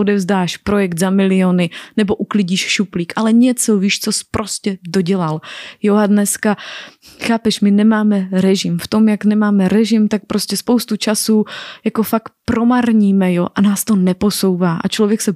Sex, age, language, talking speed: female, 20-39, Slovak, 160 wpm